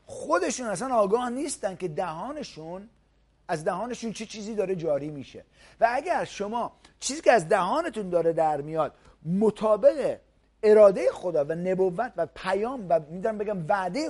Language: English